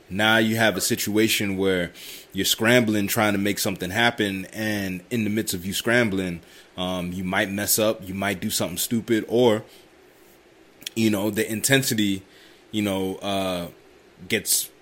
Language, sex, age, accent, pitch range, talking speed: English, male, 20-39, American, 95-110 Hz, 160 wpm